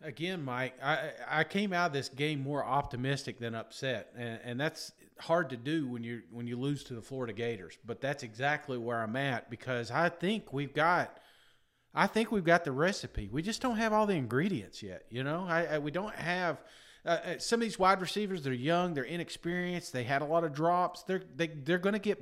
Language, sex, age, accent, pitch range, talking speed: English, male, 40-59, American, 135-190 Hz, 220 wpm